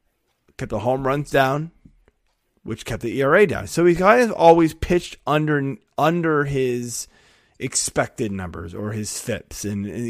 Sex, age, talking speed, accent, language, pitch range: male, 20-39, 155 wpm, American, English, 100-140 Hz